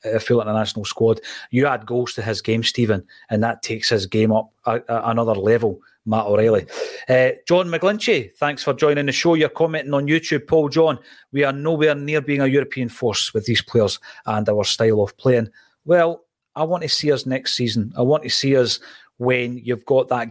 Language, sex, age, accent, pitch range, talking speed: English, male, 30-49, British, 115-145 Hz, 215 wpm